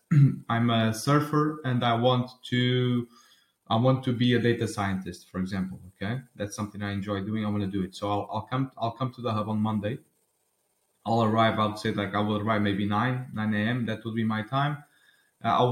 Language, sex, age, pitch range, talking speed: English, male, 20-39, 105-120 Hz, 220 wpm